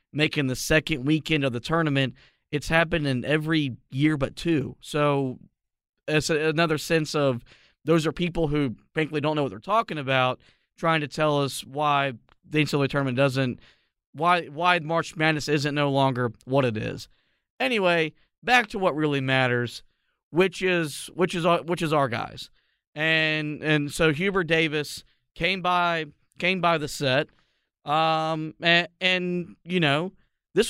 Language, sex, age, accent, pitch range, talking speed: English, male, 40-59, American, 140-180 Hz, 160 wpm